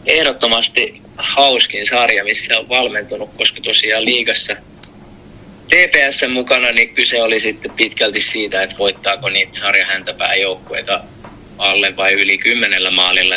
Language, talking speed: Finnish, 115 wpm